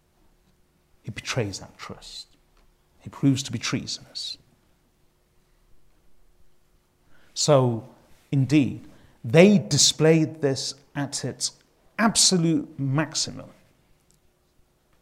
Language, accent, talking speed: English, British, 70 wpm